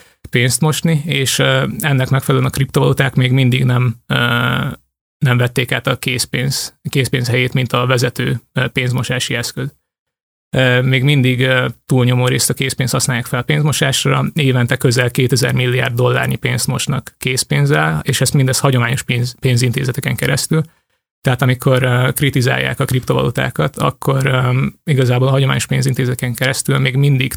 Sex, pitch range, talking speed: male, 125-135 Hz, 135 wpm